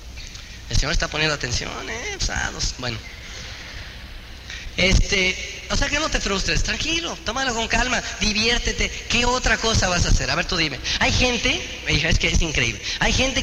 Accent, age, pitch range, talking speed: Mexican, 30-49, 175-260 Hz, 180 wpm